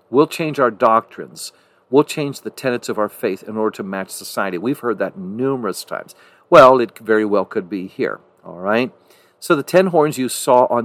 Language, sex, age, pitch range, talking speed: English, male, 50-69, 110-135 Hz, 205 wpm